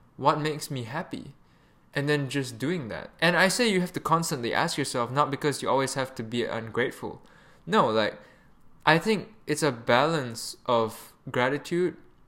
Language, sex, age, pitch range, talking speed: English, male, 10-29, 125-165 Hz, 170 wpm